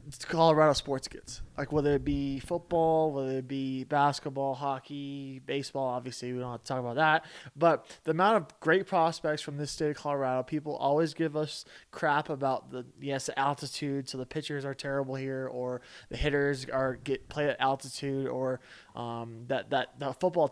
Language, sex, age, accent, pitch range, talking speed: English, male, 20-39, American, 130-155 Hz, 180 wpm